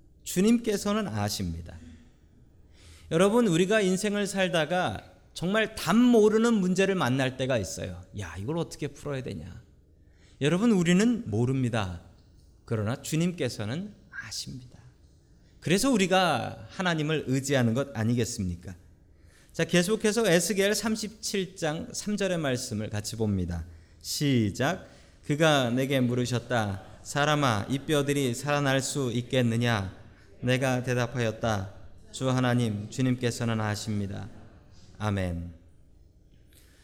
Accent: native